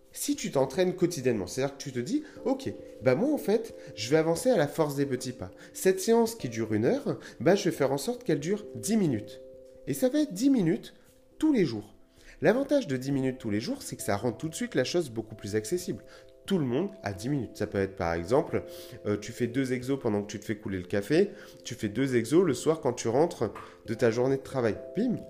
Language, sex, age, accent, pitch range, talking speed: French, male, 30-49, French, 115-165 Hz, 255 wpm